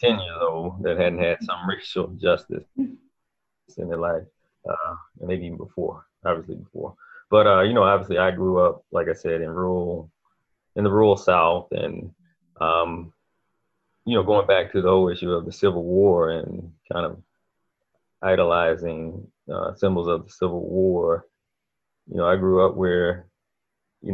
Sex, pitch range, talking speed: male, 85-100 Hz, 165 wpm